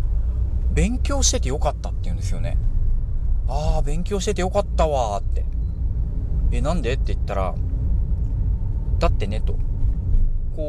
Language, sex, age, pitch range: Japanese, male, 40-59, 90-105 Hz